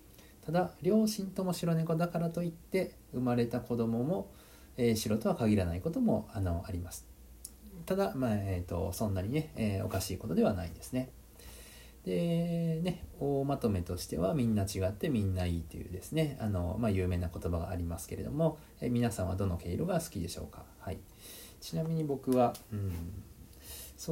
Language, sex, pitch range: Japanese, male, 90-125 Hz